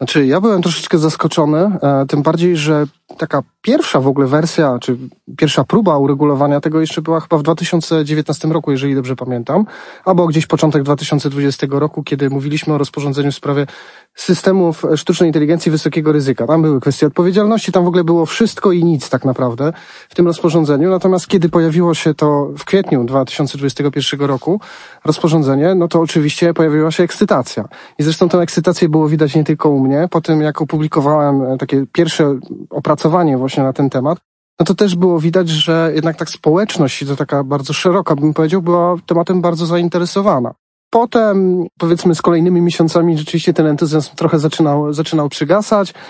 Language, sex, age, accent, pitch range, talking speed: Polish, male, 30-49, native, 150-175 Hz, 165 wpm